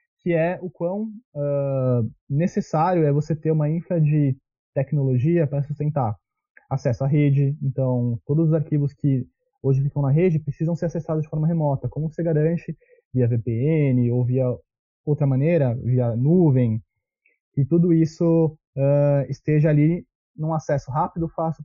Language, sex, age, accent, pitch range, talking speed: Portuguese, male, 20-39, Brazilian, 135-170 Hz, 150 wpm